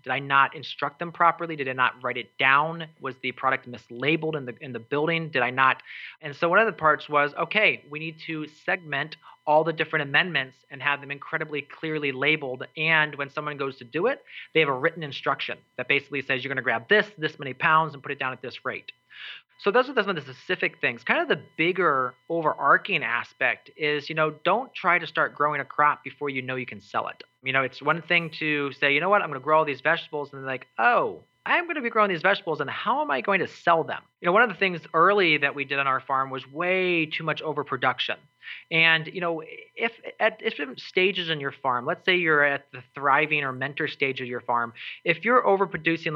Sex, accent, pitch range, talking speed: male, American, 140-165 Hz, 240 wpm